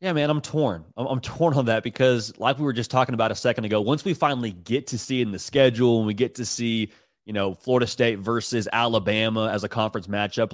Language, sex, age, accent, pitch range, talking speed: English, male, 30-49, American, 105-130 Hz, 245 wpm